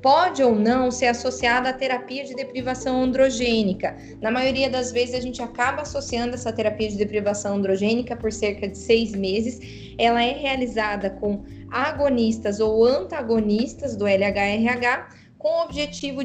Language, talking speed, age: Portuguese, 150 wpm, 20-39